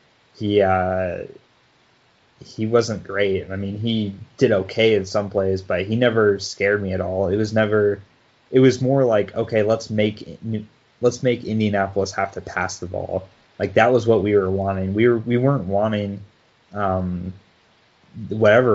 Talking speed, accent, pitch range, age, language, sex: 165 wpm, American, 95-110 Hz, 20-39, English, male